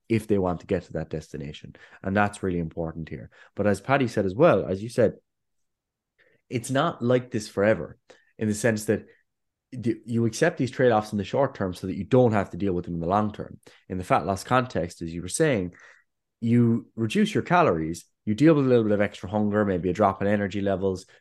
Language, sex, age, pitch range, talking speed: English, male, 20-39, 95-120 Hz, 225 wpm